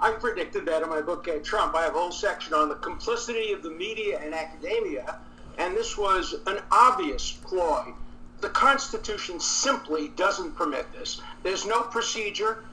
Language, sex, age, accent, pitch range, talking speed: English, male, 50-69, American, 185-300 Hz, 165 wpm